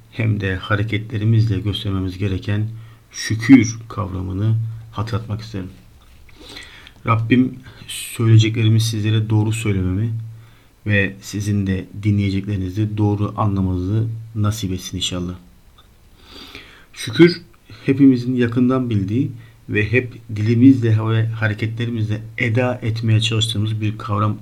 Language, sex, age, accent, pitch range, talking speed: Turkish, male, 50-69, native, 105-115 Hz, 90 wpm